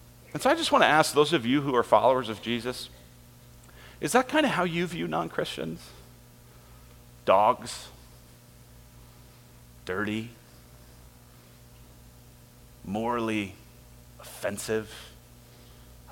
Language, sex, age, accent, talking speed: English, male, 40-59, American, 105 wpm